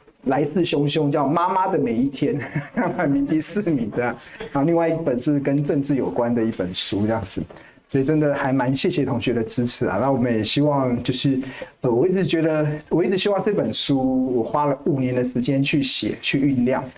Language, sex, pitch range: Chinese, male, 125-155 Hz